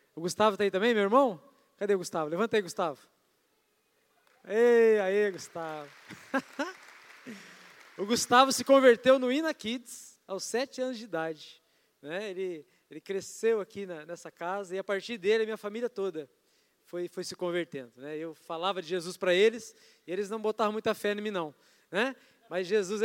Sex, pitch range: male, 185-235 Hz